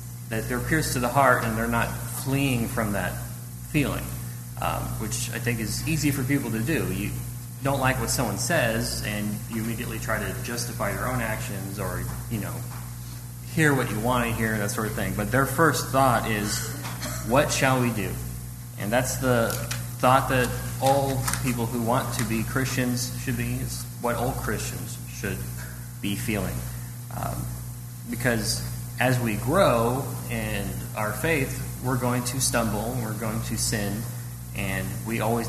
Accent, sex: American, male